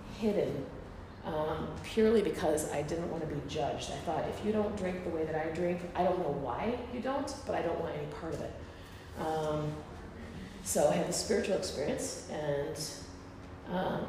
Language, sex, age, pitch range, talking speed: English, female, 30-49, 150-200 Hz, 190 wpm